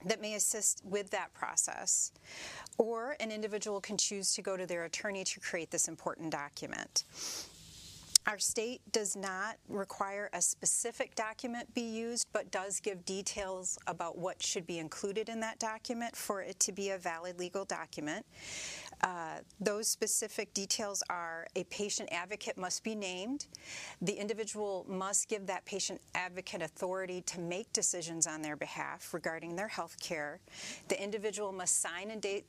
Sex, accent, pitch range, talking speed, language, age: female, American, 180-215 Hz, 160 wpm, English, 40-59